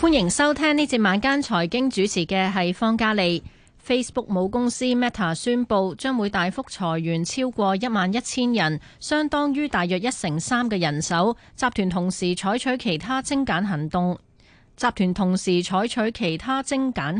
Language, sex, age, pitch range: Chinese, female, 30-49, 180-240 Hz